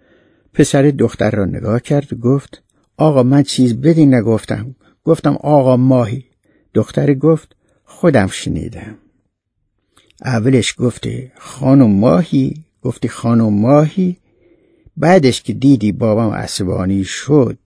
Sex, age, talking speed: male, 60-79, 110 wpm